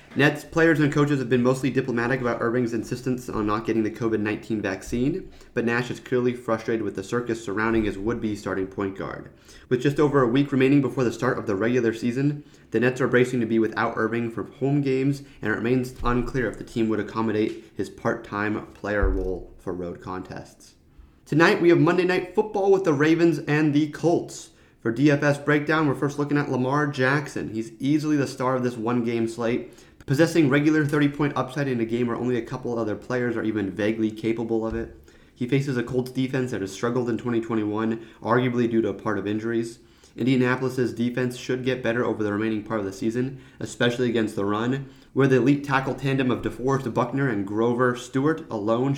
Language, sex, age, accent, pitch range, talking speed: English, male, 30-49, American, 110-135 Hz, 205 wpm